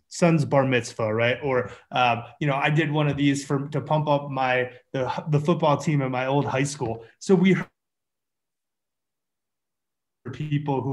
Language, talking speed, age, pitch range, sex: English, 175 wpm, 20-39, 130-160 Hz, male